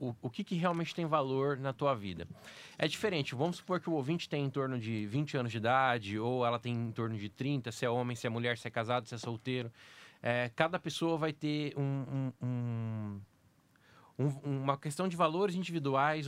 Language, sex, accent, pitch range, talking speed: Portuguese, male, Brazilian, 130-165 Hz, 195 wpm